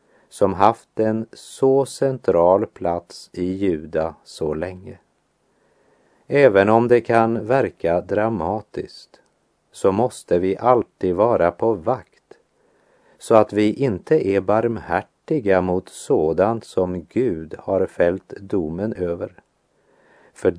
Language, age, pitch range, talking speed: Swedish, 50-69, 90-115 Hz, 110 wpm